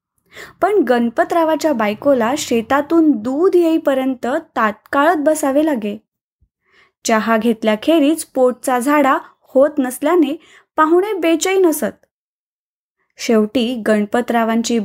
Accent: native